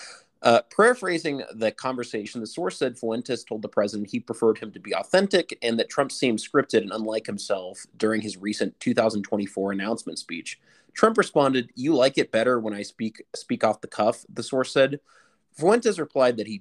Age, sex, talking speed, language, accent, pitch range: 30-49, male, 185 wpm, English, American, 105-140 Hz